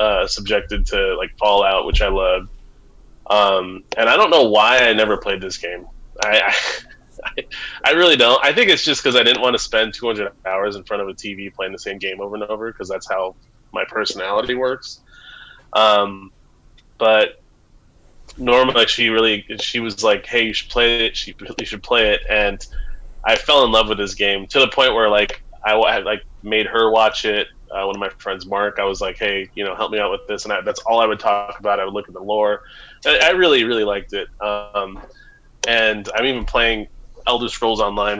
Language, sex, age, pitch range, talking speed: English, male, 20-39, 95-110 Hz, 215 wpm